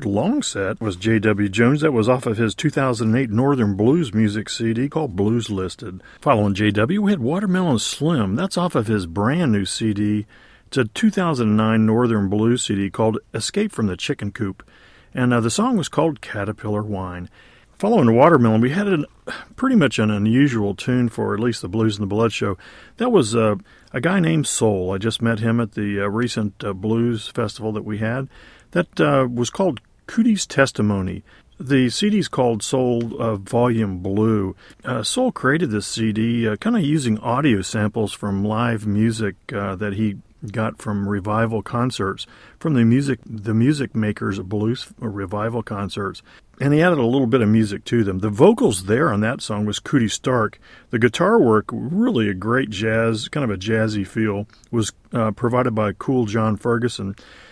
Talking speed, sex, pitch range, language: 180 wpm, male, 105-125 Hz, English